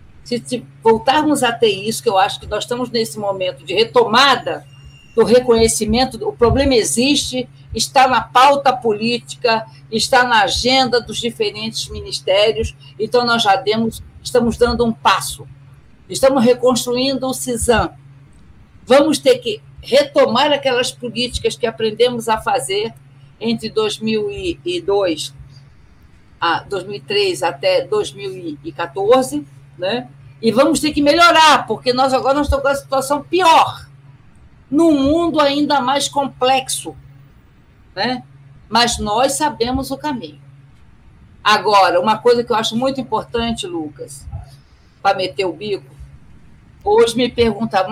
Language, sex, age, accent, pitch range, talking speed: Portuguese, female, 50-69, Brazilian, 195-275 Hz, 125 wpm